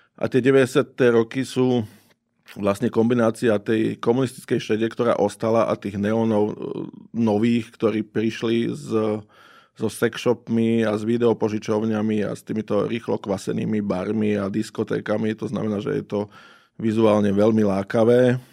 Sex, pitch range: male, 100-115 Hz